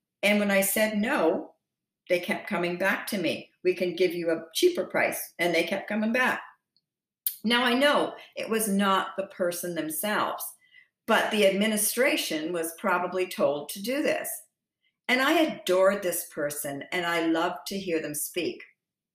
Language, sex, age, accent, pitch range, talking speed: English, female, 50-69, American, 170-220 Hz, 165 wpm